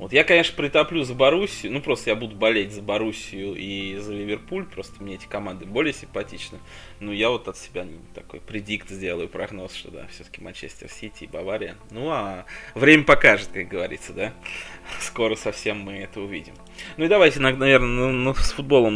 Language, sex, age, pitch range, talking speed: Russian, male, 20-39, 100-120 Hz, 180 wpm